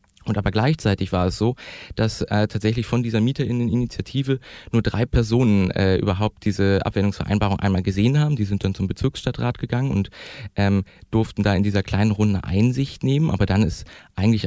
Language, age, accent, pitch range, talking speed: German, 30-49, German, 95-115 Hz, 175 wpm